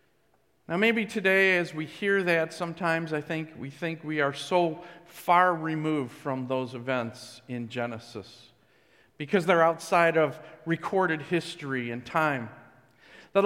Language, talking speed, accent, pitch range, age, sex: English, 140 wpm, American, 140-175 Hz, 50-69, male